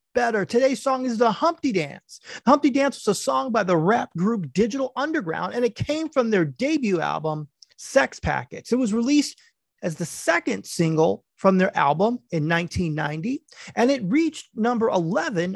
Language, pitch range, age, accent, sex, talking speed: English, 170-250 Hz, 30-49, American, male, 175 wpm